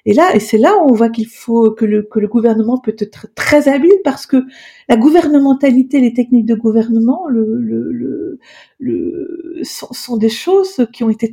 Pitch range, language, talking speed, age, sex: 215-270 Hz, French, 200 wpm, 50-69, female